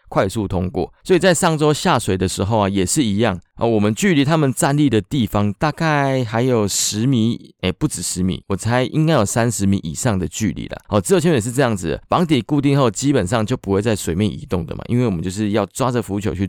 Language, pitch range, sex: Chinese, 100-145 Hz, male